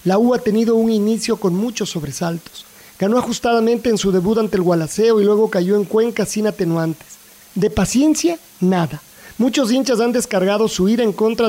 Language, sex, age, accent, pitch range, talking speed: Spanish, male, 40-59, Mexican, 185-235 Hz, 185 wpm